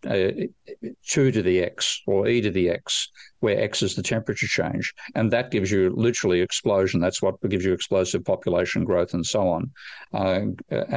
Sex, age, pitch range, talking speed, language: male, 50-69, 95-105 Hz, 180 wpm, English